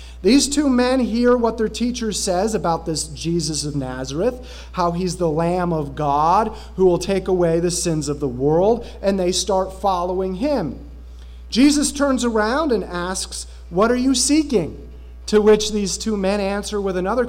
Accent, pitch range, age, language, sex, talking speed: American, 160-225 Hz, 40-59, English, male, 175 wpm